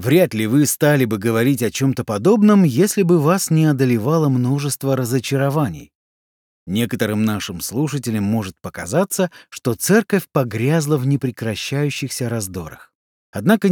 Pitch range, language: 115-170 Hz, Russian